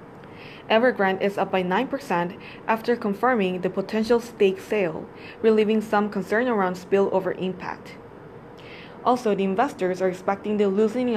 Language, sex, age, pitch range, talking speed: English, female, 20-39, 185-225 Hz, 130 wpm